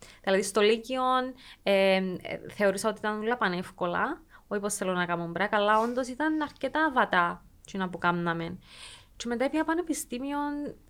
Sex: female